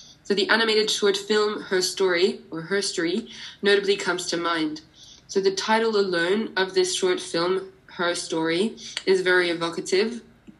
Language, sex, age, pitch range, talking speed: English, female, 20-39, 180-210 Hz, 145 wpm